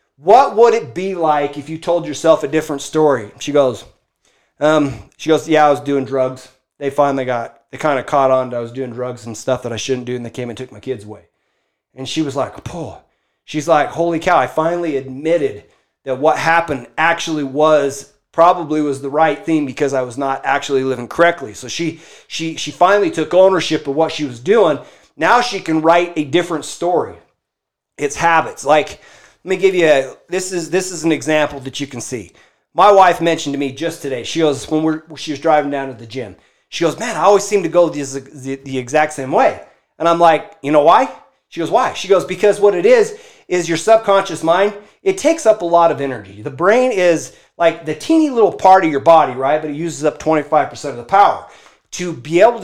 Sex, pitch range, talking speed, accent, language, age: male, 135-175 Hz, 225 wpm, American, English, 30-49